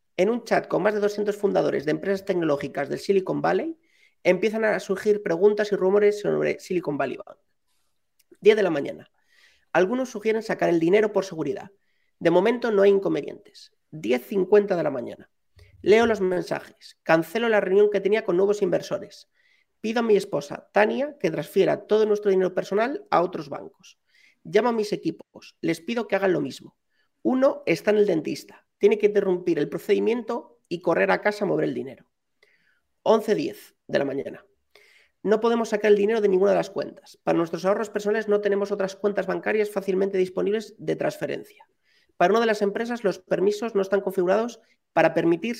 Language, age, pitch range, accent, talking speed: Spanish, 40-59, 190-220 Hz, Spanish, 180 wpm